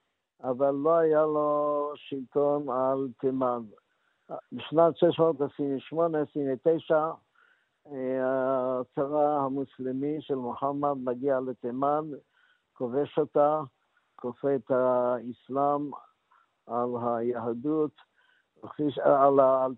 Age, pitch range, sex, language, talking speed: 60-79, 125-150 Hz, male, Hebrew, 70 wpm